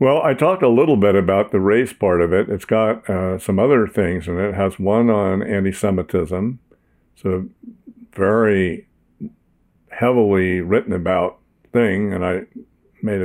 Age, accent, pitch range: 60-79, American, 95-115 Hz